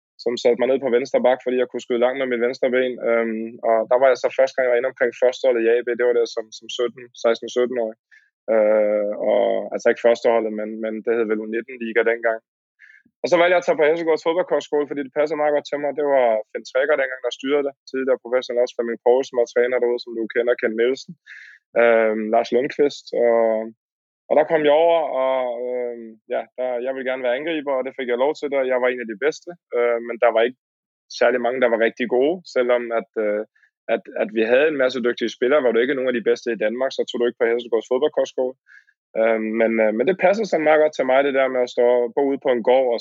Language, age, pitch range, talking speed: Danish, 20-39, 115-130 Hz, 245 wpm